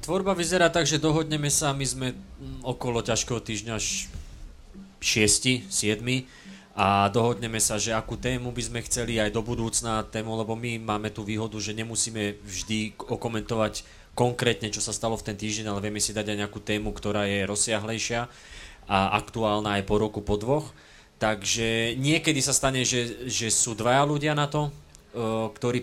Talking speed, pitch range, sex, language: 165 wpm, 105-120 Hz, male, Slovak